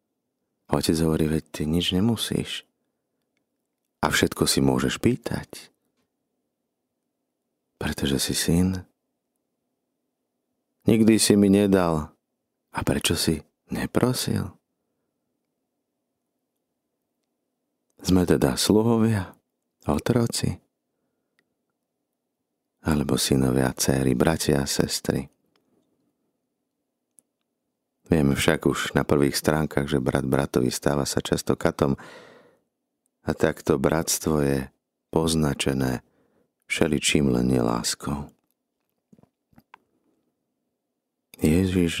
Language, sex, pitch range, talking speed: Slovak, male, 70-90 Hz, 75 wpm